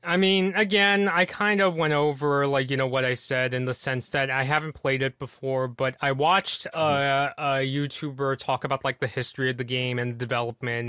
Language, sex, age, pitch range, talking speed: English, male, 20-39, 125-160 Hz, 220 wpm